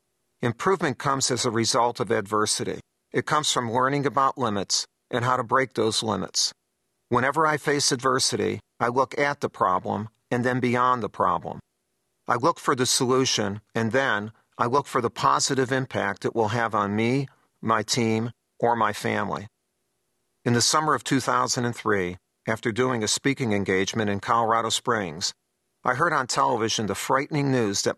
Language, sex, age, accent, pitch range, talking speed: English, male, 50-69, American, 100-130 Hz, 165 wpm